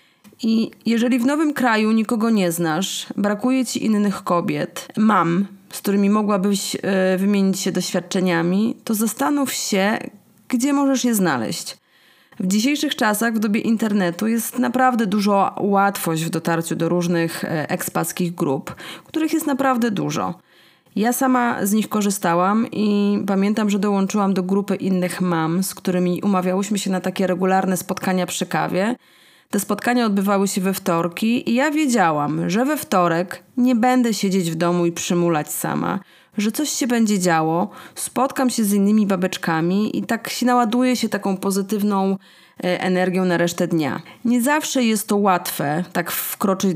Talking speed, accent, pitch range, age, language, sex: 150 wpm, native, 180-225 Hz, 30-49, Polish, female